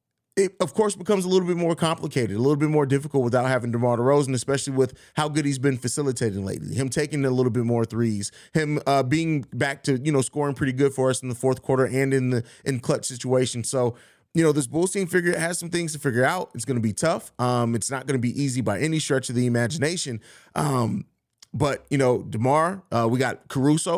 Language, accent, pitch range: English, American, 120-150 Hz